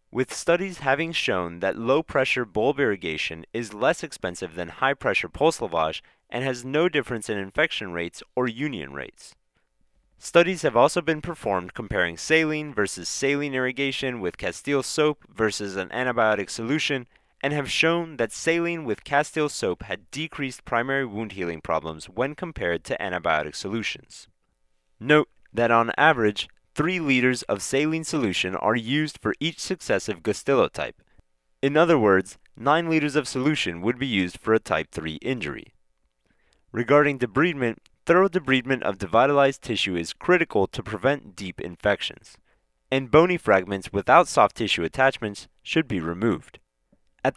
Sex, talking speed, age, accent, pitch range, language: male, 145 wpm, 30-49, American, 95-150 Hz, English